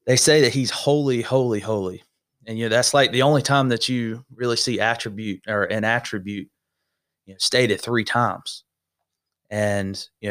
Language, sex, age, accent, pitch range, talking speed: English, male, 30-49, American, 100-125 Hz, 175 wpm